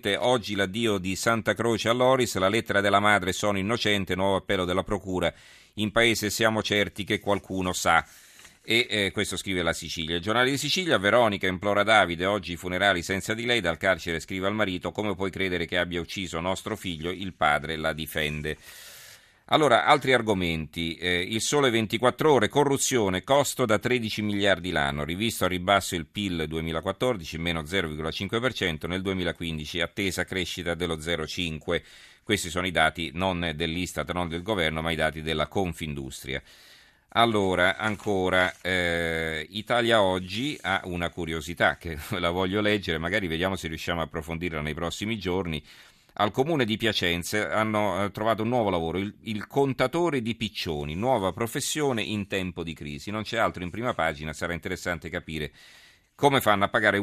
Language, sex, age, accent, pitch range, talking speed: Italian, male, 40-59, native, 85-110 Hz, 165 wpm